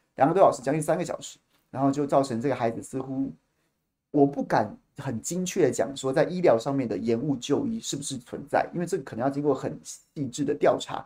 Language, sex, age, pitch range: Chinese, male, 30-49, 140-195 Hz